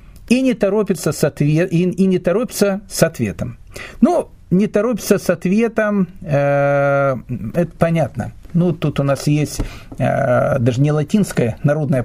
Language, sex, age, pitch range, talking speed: Russian, male, 40-59, 135-195 Hz, 135 wpm